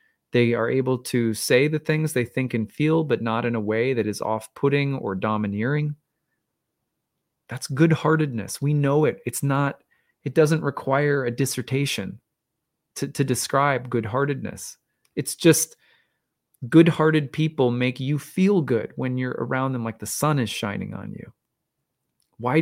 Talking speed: 150 wpm